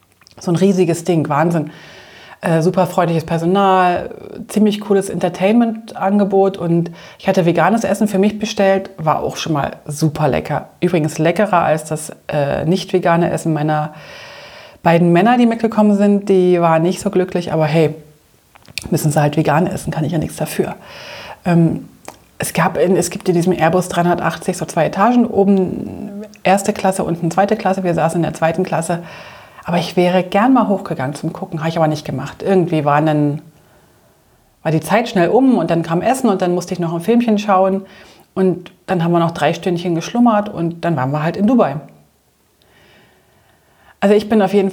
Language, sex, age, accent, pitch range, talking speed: German, female, 30-49, German, 160-195 Hz, 180 wpm